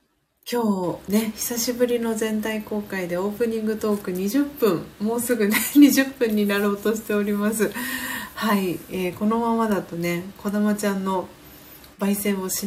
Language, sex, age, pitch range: Japanese, female, 40-59, 175-235 Hz